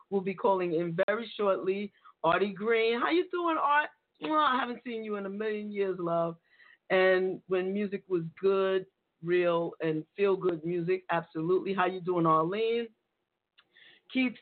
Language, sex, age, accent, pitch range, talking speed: English, female, 40-59, American, 175-225 Hz, 155 wpm